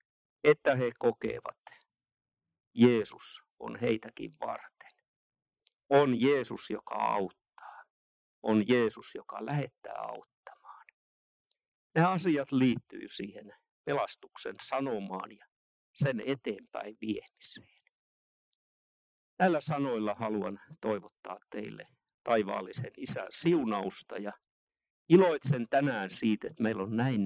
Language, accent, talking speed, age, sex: Finnish, native, 95 wpm, 50-69, male